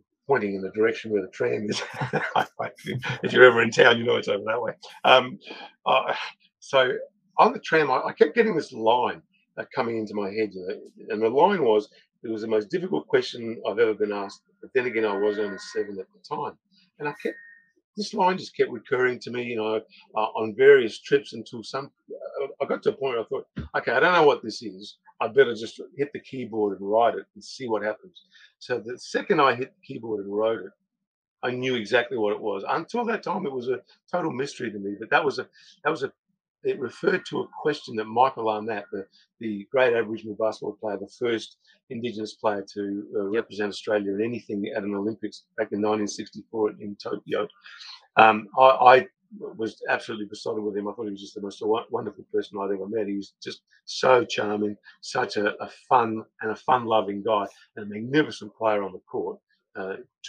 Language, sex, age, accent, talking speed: English, male, 50-69, British, 210 wpm